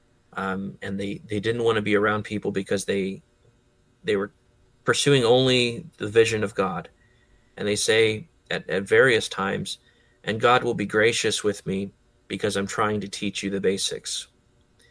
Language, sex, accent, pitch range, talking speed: English, male, American, 105-120 Hz, 170 wpm